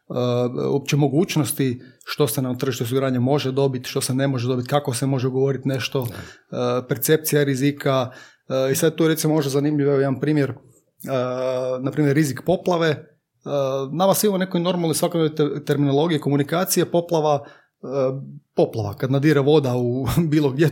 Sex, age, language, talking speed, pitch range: male, 30-49, Croatian, 155 wpm, 135-160 Hz